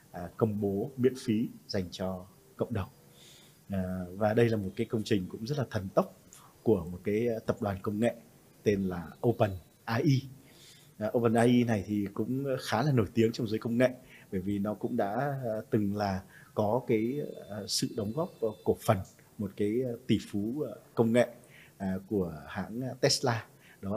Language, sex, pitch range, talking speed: Vietnamese, male, 100-120 Hz, 170 wpm